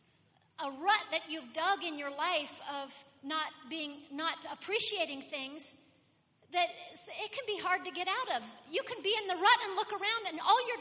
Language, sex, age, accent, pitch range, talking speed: English, female, 40-59, American, 255-325 Hz, 195 wpm